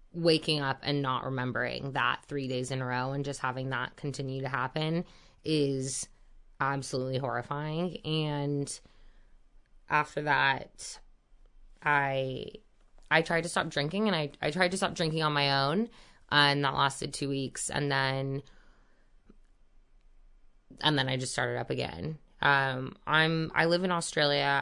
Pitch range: 135-155 Hz